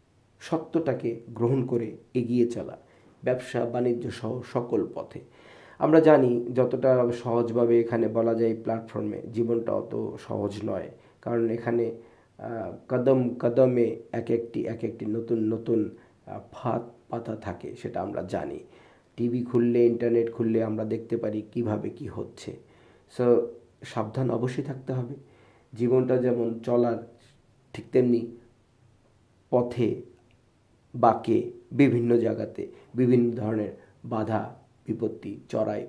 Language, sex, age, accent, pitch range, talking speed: Bengali, male, 50-69, native, 115-125 Hz, 110 wpm